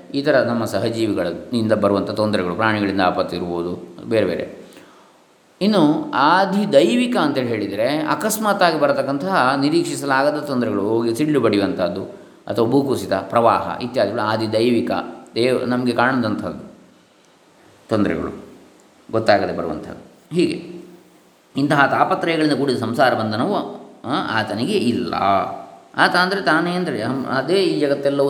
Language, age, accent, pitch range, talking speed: Kannada, 20-39, native, 115-140 Hz, 105 wpm